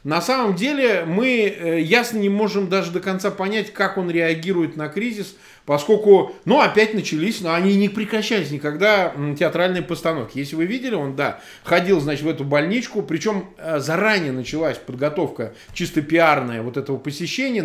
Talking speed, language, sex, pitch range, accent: 160 wpm, Russian, male, 145-210 Hz, native